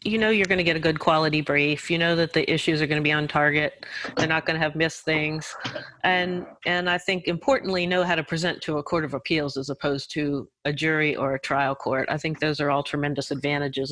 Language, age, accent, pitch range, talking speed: English, 40-59, American, 145-170 Hz, 250 wpm